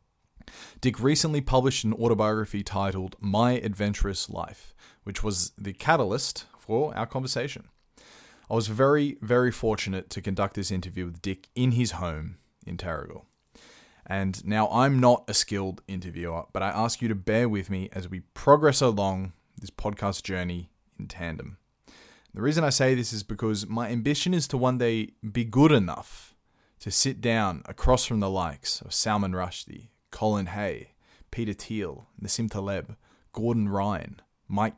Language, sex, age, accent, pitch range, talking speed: English, male, 20-39, Australian, 100-120 Hz, 155 wpm